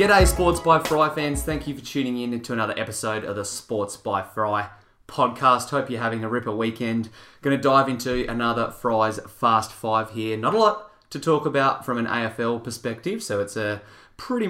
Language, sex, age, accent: English, male, 20-39, Australian